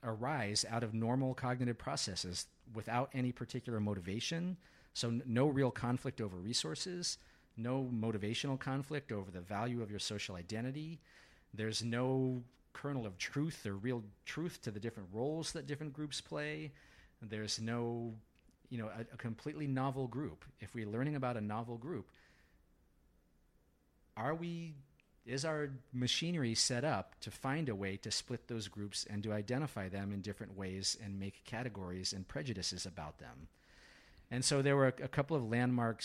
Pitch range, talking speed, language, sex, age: 100-130 Hz, 160 wpm, English, male, 40-59